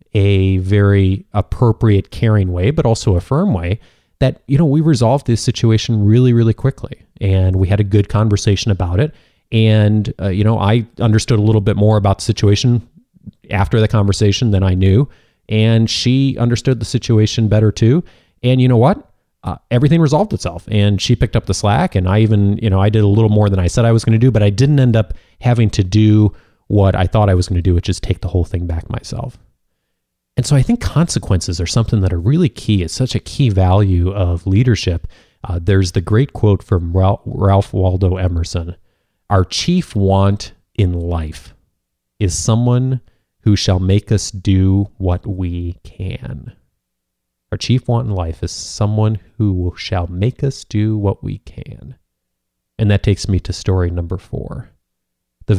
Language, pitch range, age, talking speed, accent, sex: English, 95-115 Hz, 30-49, 190 wpm, American, male